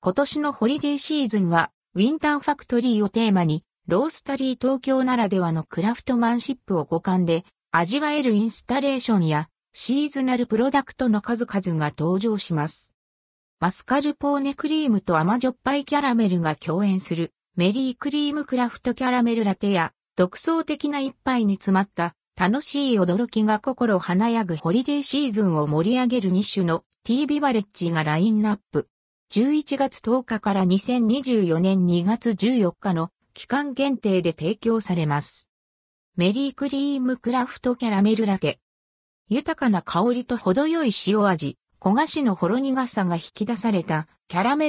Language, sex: Japanese, female